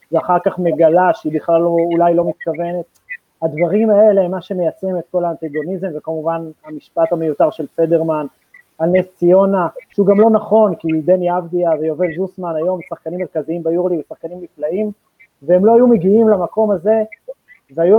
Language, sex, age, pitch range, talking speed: Hebrew, male, 30-49, 160-210 Hz, 165 wpm